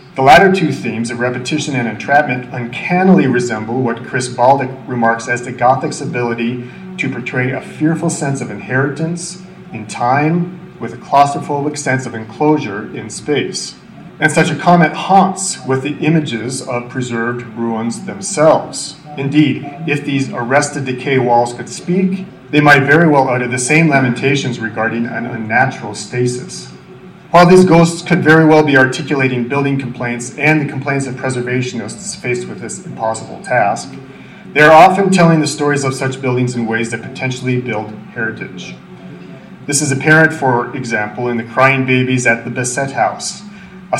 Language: English